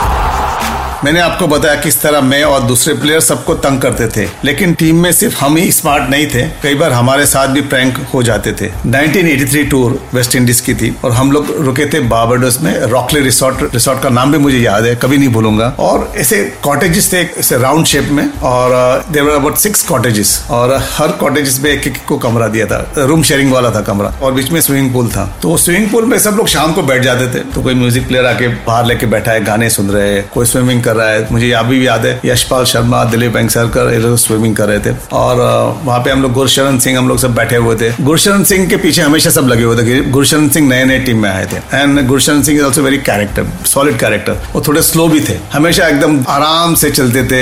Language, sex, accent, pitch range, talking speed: Hindi, male, native, 120-150 Hz, 165 wpm